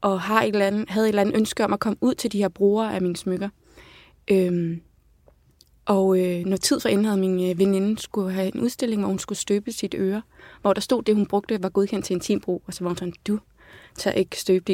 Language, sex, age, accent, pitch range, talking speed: Danish, female, 20-39, native, 185-215 Hz, 250 wpm